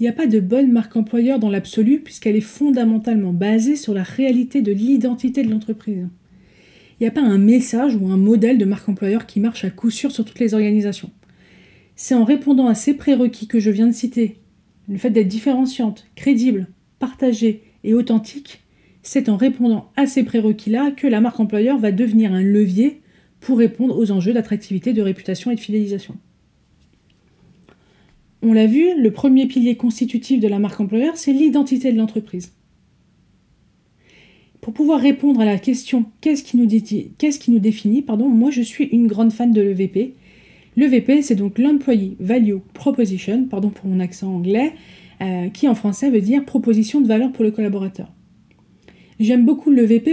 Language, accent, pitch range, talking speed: French, French, 210-260 Hz, 175 wpm